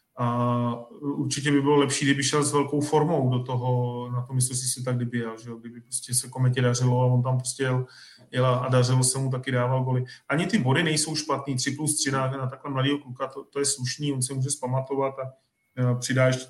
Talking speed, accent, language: 225 wpm, native, Czech